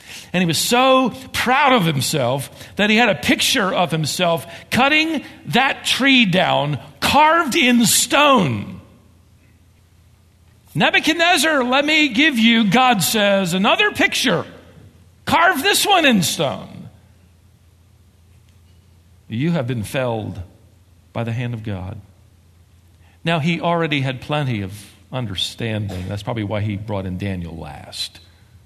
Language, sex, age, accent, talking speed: English, male, 50-69, American, 125 wpm